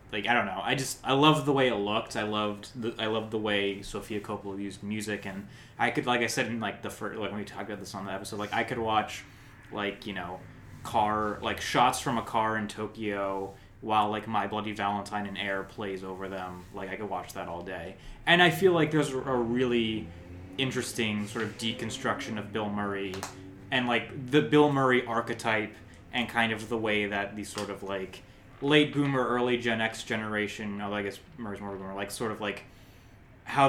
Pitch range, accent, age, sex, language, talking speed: 100-120 Hz, American, 20-39, male, English, 215 wpm